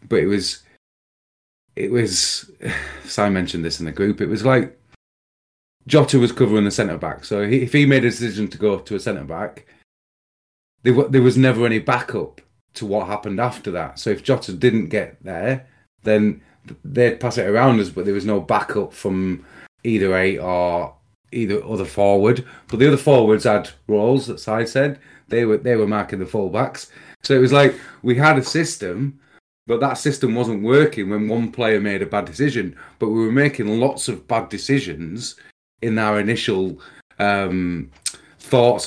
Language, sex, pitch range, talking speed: English, male, 105-130 Hz, 175 wpm